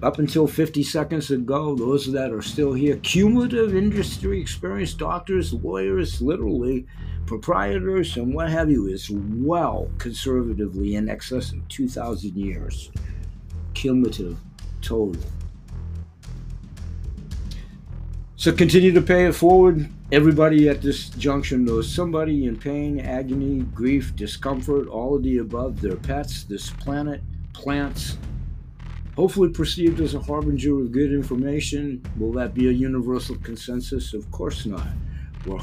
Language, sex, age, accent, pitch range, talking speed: English, male, 60-79, American, 105-145 Hz, 125 wpm